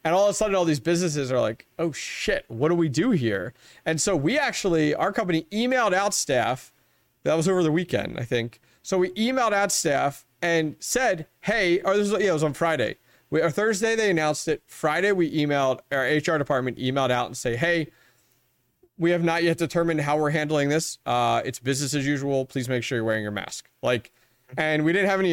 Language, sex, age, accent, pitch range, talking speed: English, male, 30-49, American, 130-175 Hz, 220 wpm